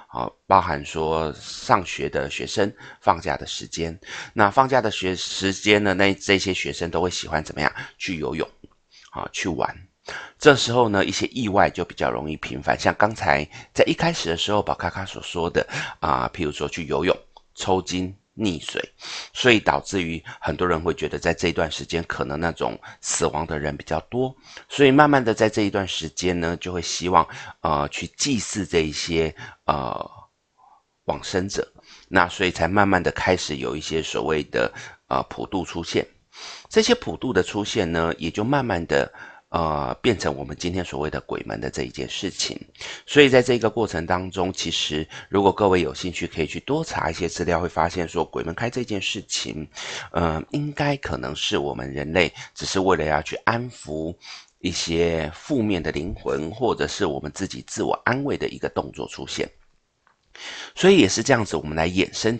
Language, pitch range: Chinese, 80-105 Hz